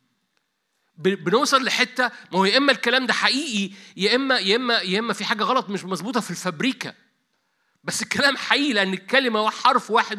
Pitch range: 195-240 Hz